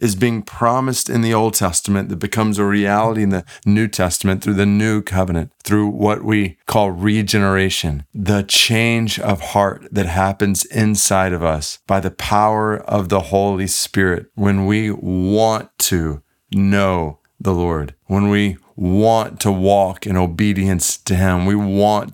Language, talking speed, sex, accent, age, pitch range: English, 155 wpm, male, American, 40-59, 95-110 Hz